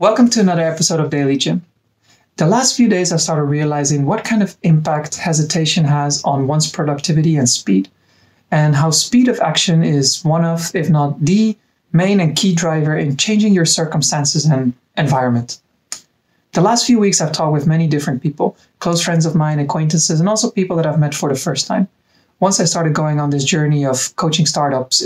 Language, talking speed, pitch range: English, 195 wpm, 150-185 Hz